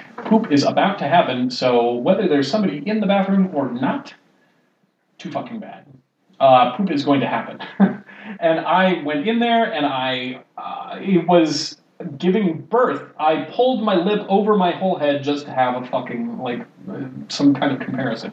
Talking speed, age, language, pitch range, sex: 175 wpm, 30-49, English, 140-180 Hz, male